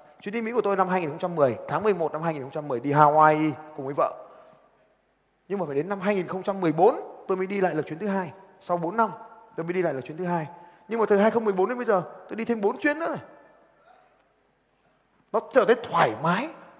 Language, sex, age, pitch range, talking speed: Vietnamese, male, 20-39, 175-225 Hz, 215 wpm